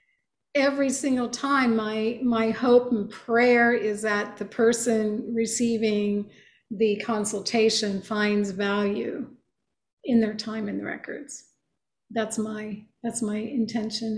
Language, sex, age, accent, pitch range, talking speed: English, female, 50-69, American, 215-250 Hz, 120 wpm